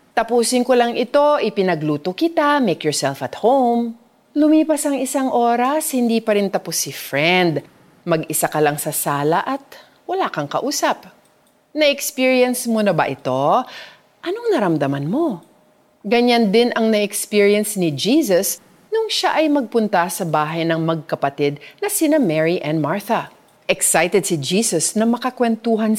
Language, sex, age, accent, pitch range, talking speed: Filipino, female, 40-59, native, 175-285 Hz, 140 wpm